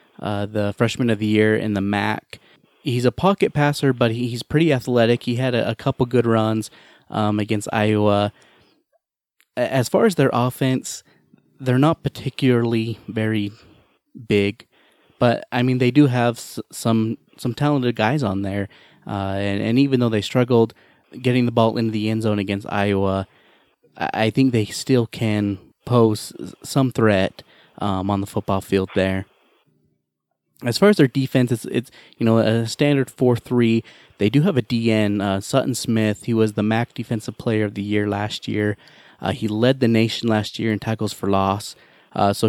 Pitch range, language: 105-125 Hz, English